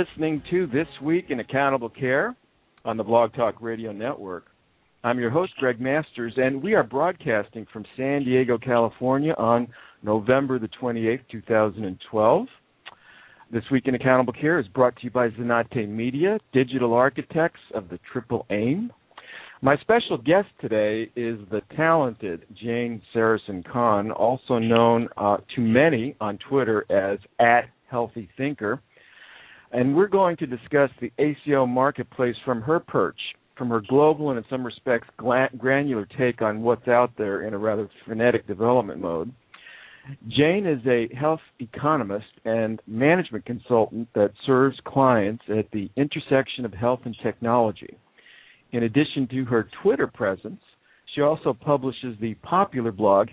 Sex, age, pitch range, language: male, 50-69, 115-135 Hz, English